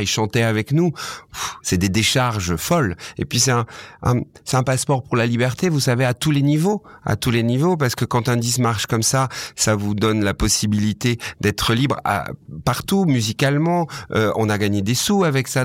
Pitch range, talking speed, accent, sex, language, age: 105-135 Hz, 210 wpm, French, male, French, 40-59